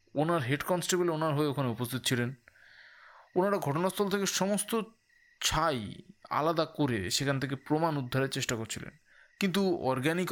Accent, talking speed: native, 135 wpm